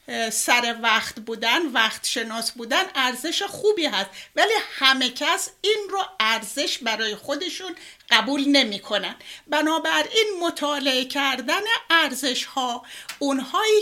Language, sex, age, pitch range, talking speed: Persian, female, 60-79, 250-330 Hz, 115 wpm